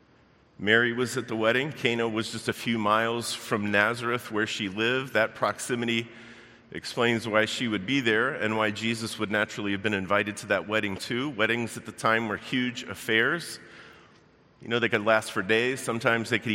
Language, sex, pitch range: English, male, 105-120 Hz